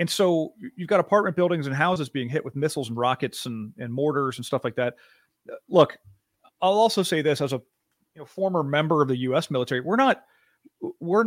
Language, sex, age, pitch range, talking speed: English, male, 30-49, 125-165 Hz, 210 wpm